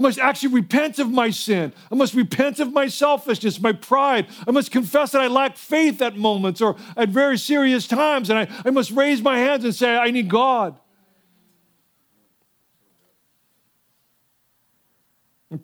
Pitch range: 210-255 Hz